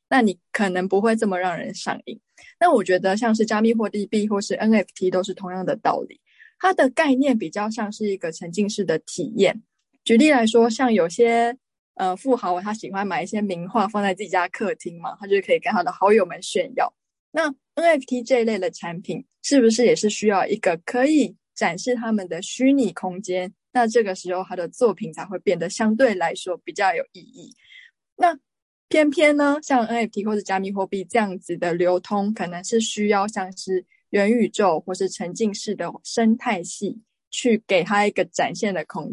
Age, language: 20-39, Chinese